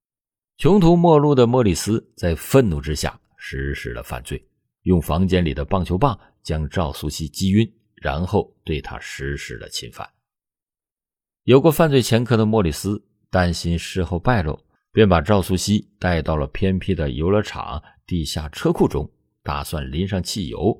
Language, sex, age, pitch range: Chinese, male, 50-69, 80-105 Hz